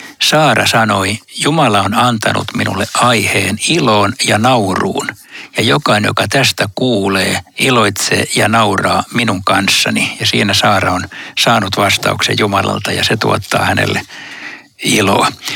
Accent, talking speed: native, 125 wpm